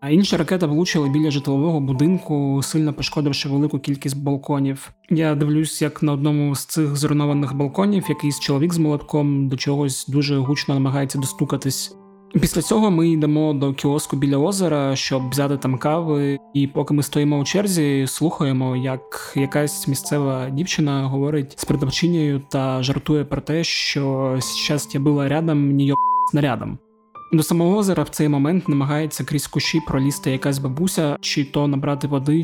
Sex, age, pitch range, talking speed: male, 20-39, 140-155 Hz, 155 wpm